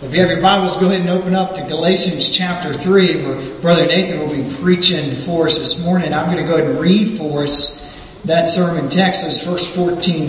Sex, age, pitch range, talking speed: male, 40-59, 150-195 Hz, 225 wpm